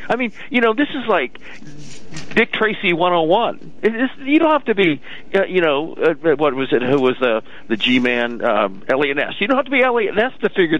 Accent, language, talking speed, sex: American, English, 220 wpm, male